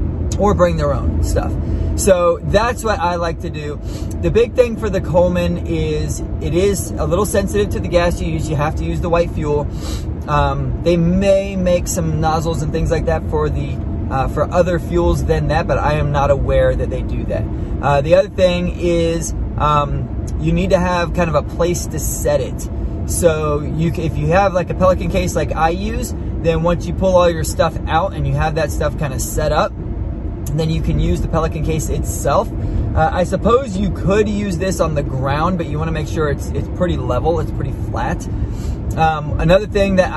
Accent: American